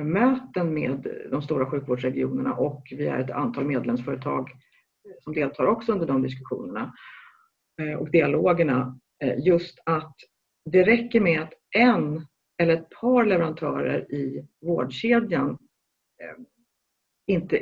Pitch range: 140-220 Hz